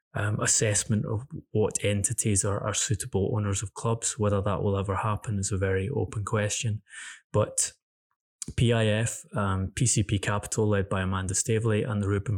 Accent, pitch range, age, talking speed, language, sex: British, 100-110 Hz, 20-39, 160 wpm, English, male